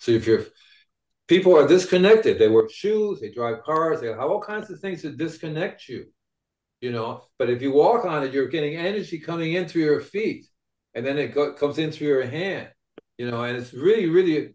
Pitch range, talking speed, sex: 145-210 Hz, 215 wpm, male